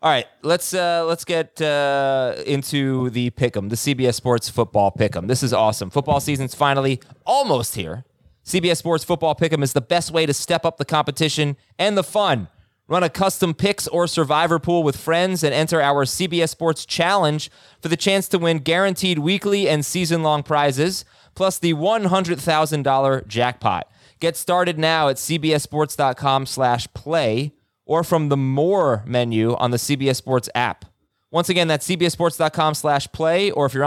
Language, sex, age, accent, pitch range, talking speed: English, male, 20-39, American, 125-165 Hz, 170 wpm